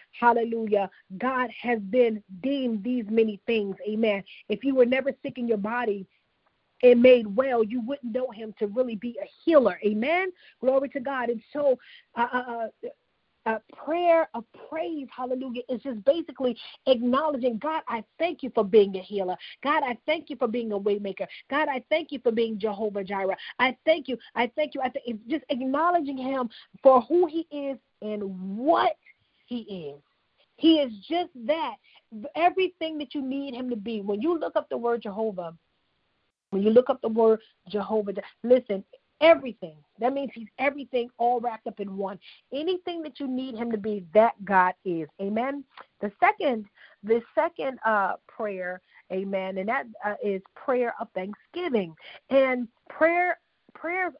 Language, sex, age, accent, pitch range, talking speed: English, female, 40-59, American, 215-280 Hz, 170 wpm